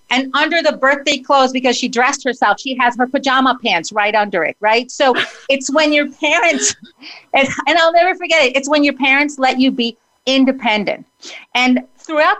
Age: 40-59